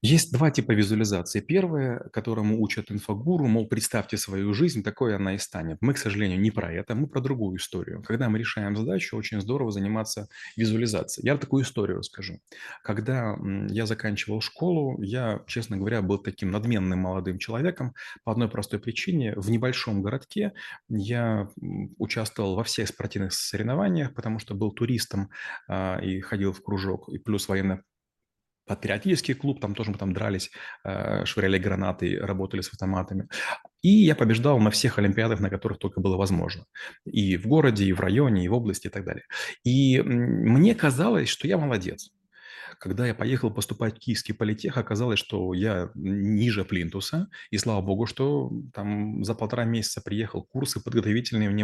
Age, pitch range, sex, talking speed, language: 30-49, 100-125 Hz, male, 160 wpm, Russian